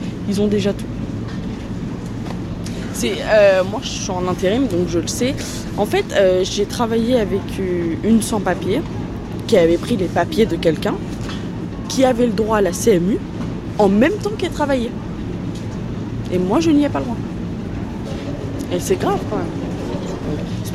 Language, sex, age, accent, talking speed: French, female, 20-39, French, 160 wpm